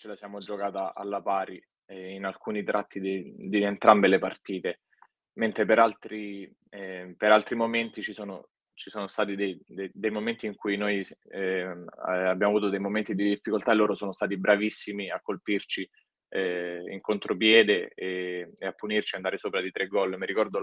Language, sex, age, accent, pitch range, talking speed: Italian, male, 20-39, native, 95-105 Hz, 180 wpm